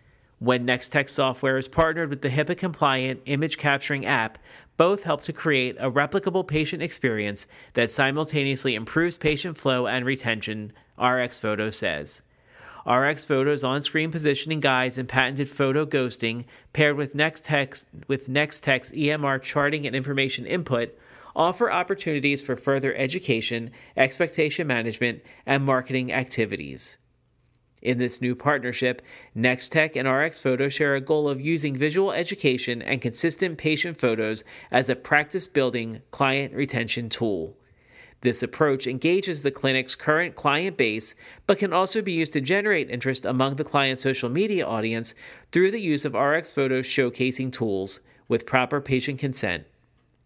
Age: 30-49